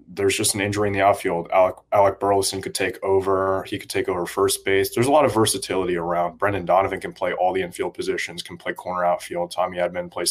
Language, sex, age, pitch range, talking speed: English, male, 20-39, 90-110 Hz, 235 wpm